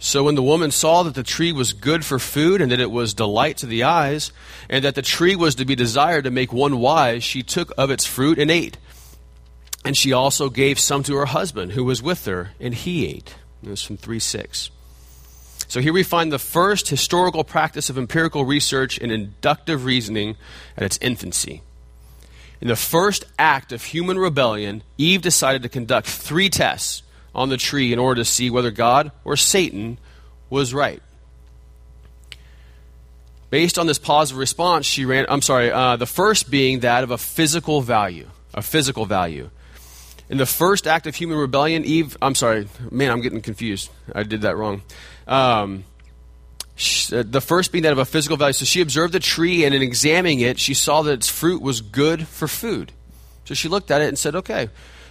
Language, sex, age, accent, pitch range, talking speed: English, male, 30-49, American, 95-150 Hz, 195 wpm